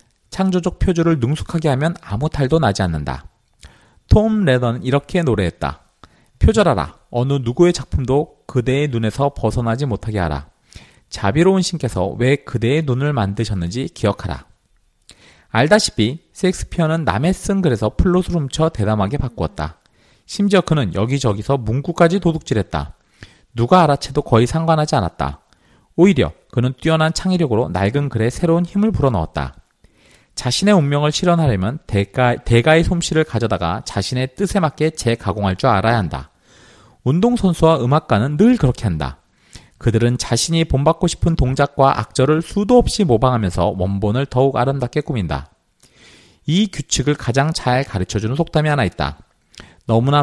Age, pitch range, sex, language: 40-59, 105-160 Hz, male, Korean